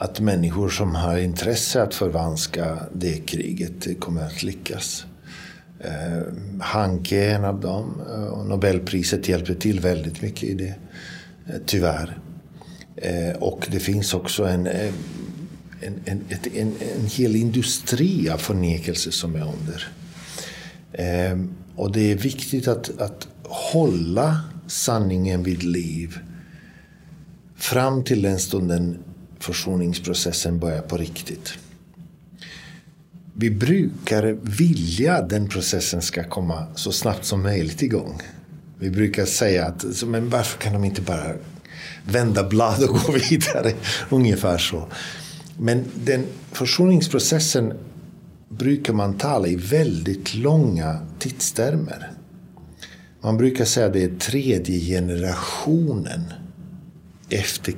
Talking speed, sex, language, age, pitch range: 115 wpm, male, Swedish, 60-79, 90-135 Hz